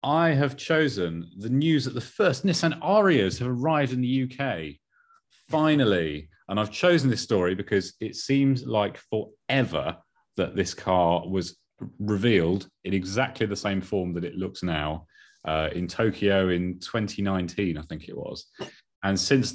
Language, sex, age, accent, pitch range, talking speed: English, male, 30-49, British, 85-110 Hz, 155 wpm